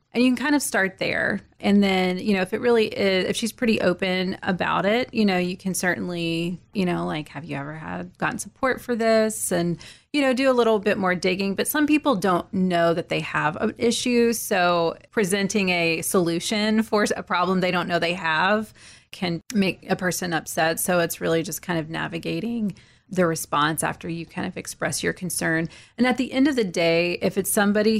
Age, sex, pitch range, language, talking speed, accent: 30-49, female, 165-200 Hz, English, 210 wpm, American